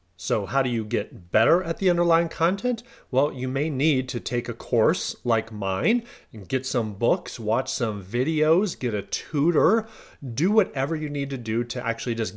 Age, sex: 30-49, male